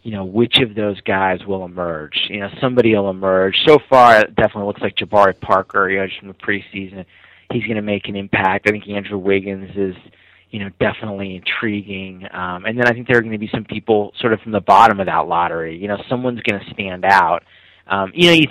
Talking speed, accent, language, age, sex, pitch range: 235 wpm, American, English, 30-49, male, 95-110 Hz